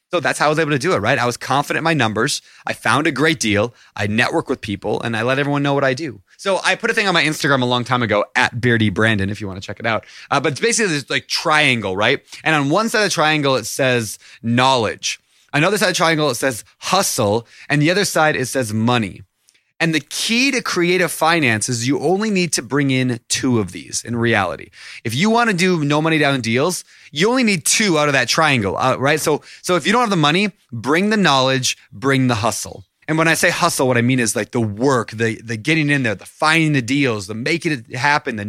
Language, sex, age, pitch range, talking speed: English, male, 20-39, 120-165 Hz, 255 wpm